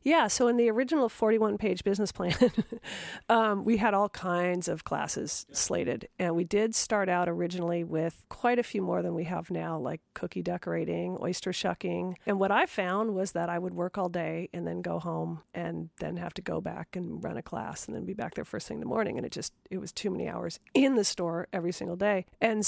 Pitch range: 180-230 Hz